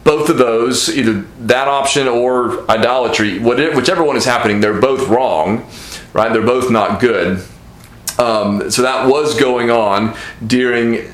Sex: male